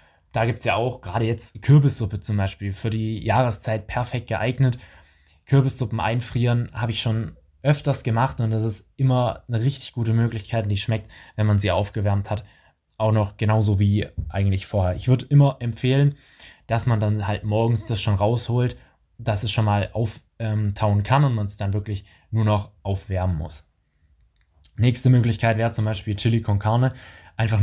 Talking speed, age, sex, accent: 175 wpm, 20-39, male, German